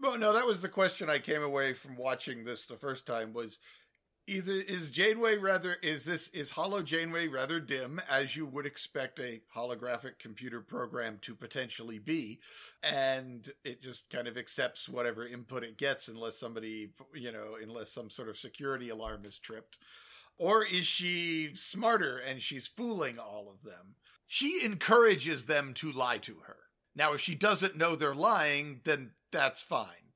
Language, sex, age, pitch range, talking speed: English, male, 50-69, 125-180 Hz, 175 wpm